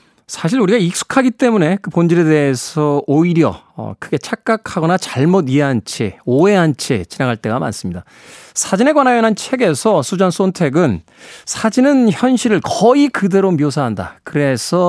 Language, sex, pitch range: Korean, male, 130-190 Hz